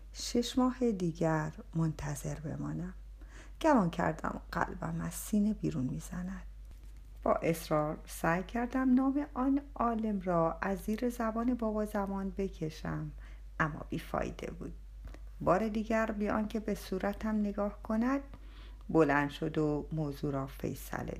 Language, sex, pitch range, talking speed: Persian, female, 160-235 Hz, 125 wpm